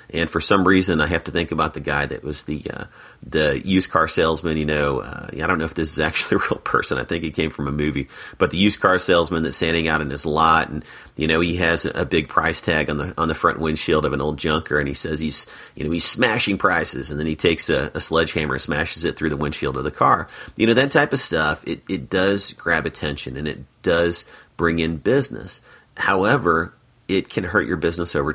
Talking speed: 250 wpm